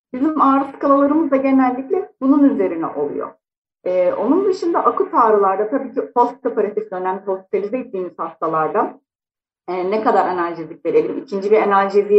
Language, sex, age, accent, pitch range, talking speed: Turkish, female, 40-59, native, 185-265 Hz, 140 wpm